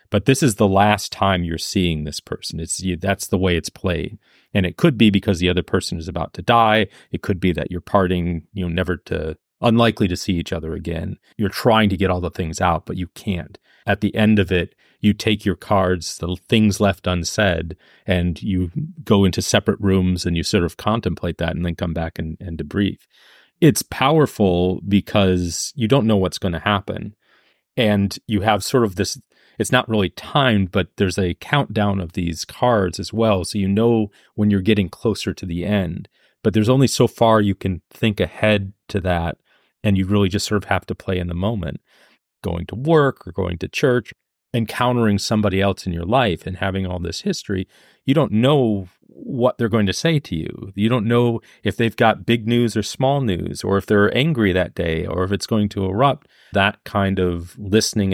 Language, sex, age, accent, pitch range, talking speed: English, male, 30-49, American, 90-110 Hz, 210 wpm